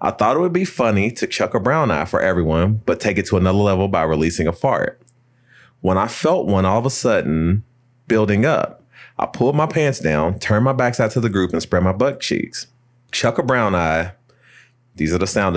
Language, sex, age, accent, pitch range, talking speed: English, male, 30-49, American, 90-125 Hz, 220 wpm